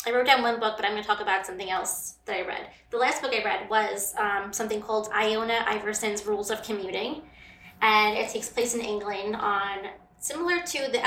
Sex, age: female, 20-39